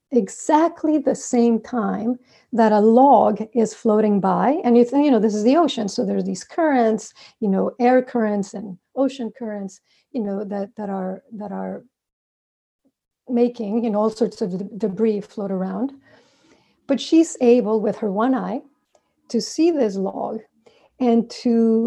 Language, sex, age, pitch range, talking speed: English, female, 50-69, 210-255 Hz, 165 wpm